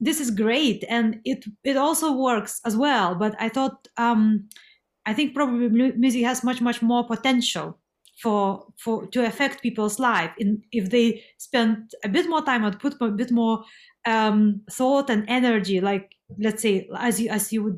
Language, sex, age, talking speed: English, female, 30-49, 180 wpm